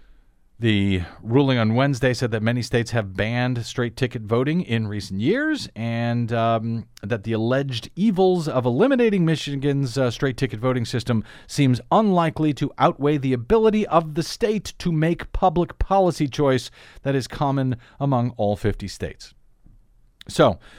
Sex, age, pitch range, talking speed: male, 40-59, 115-150 Hz, 145 wpm